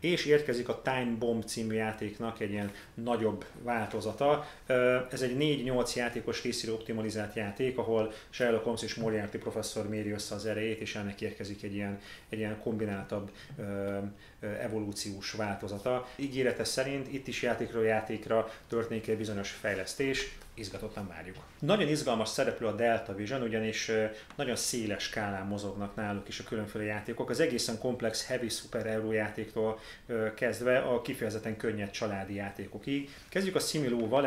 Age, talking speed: 30-49, 140 wpm